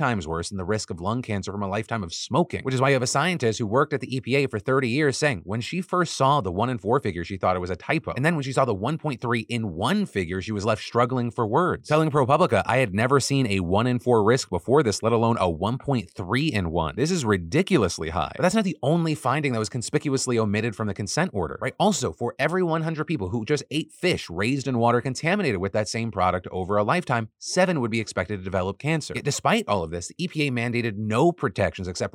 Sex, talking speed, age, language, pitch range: male, 255 wpm, 30-49, English, 105-140 Hz